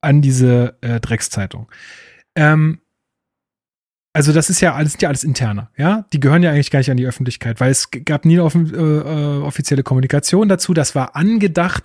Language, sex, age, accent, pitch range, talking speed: German, male, 30-49, German, 130-160 Hz, 180 wpm